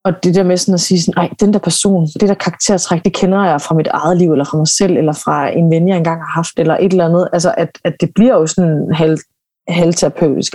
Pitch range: 165-195 Hz